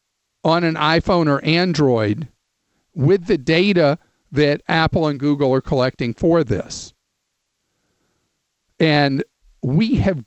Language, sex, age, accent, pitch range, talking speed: English, male, 50-69, American, 135-175 Hz, 110 wpm